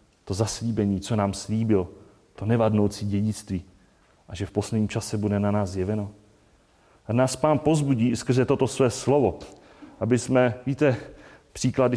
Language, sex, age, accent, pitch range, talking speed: Czech, male, 30-49, native, 95-110 Hz, 145 wpm